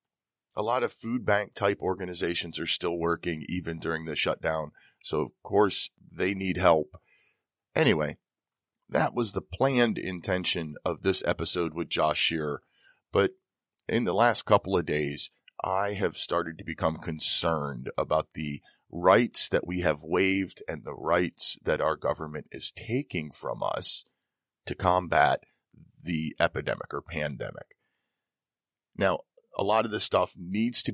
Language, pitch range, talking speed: English, 80-100 Hz, 145 wpm